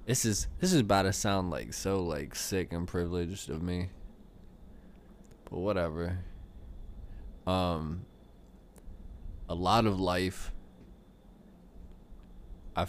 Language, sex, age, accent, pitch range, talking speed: English, male, 20-39, American, 85-100 Hz, 105 wpm